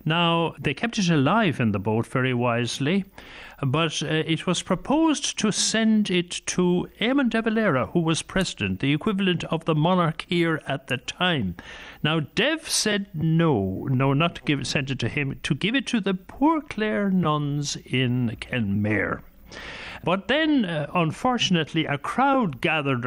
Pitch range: 140-195 Hz